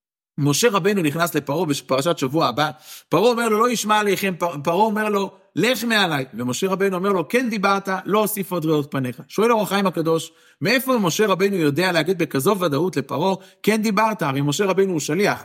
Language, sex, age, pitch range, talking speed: Hebrew, male, 50-69, 150-210 Hz, 185 wpm